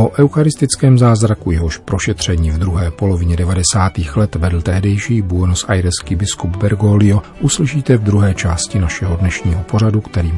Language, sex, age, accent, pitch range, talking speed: Czech, male, 40-59, native, 90-105 Hz, 140 wpm